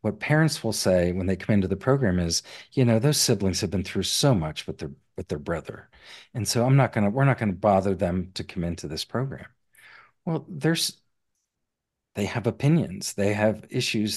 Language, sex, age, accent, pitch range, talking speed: English, male, 50-69, American, 95-125 Hz, 210 wpm